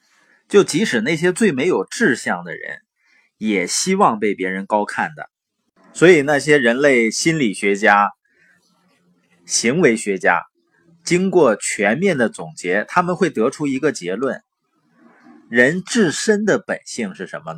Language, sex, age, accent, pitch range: Chinese, male, 20-39, native, 110-185 Hz